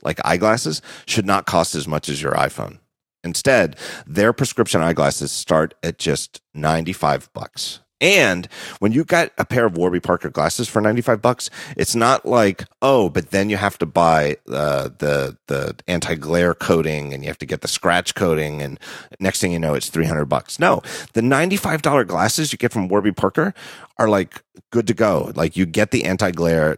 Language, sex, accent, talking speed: English, male, American, 185 wpm